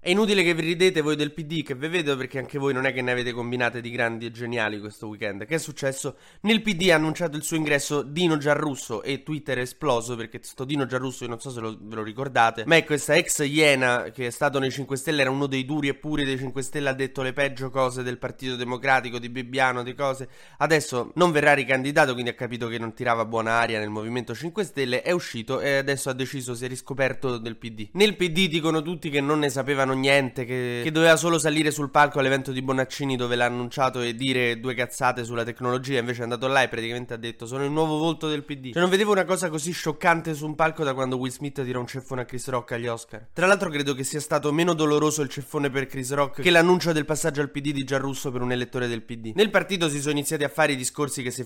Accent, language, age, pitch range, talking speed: native, Italian, 20-39, 125-155 Hz, 250 wpm